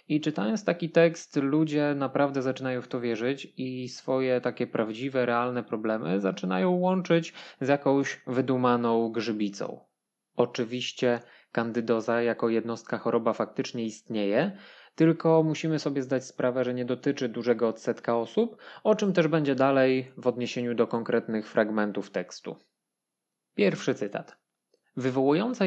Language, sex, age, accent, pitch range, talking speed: Polish, male, 20-39, native, 115-140 Hz, 125 wpm